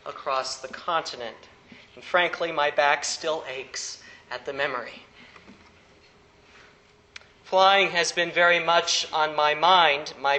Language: English